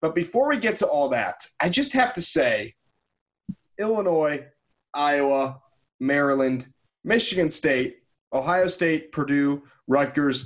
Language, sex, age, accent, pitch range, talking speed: English, male, 30-49, American, 145-190 Hz, 120 wpm